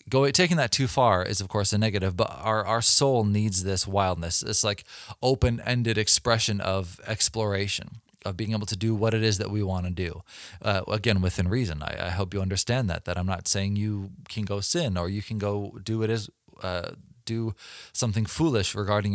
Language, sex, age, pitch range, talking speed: English, male, 20-39, 100-115 Hz, 205 wpm